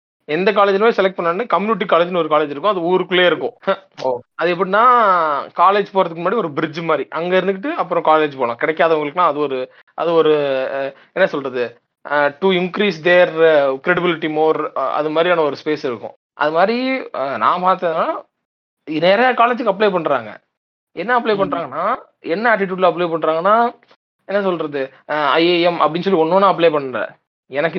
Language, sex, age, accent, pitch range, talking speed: Tamil, male, 30-49, native, 150-195 Hz, 145 wpm